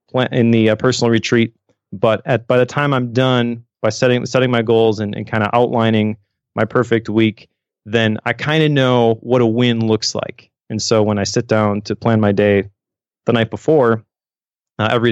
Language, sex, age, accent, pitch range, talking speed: English, male, 30-49, American, 105-125 Hz, 200 wpm